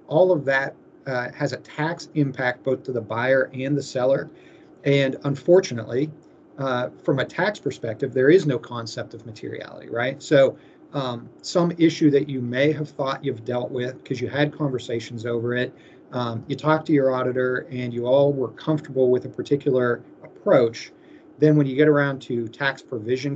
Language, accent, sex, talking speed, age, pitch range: English, American, male, 180 wpm, 40-59, 120-140 Hz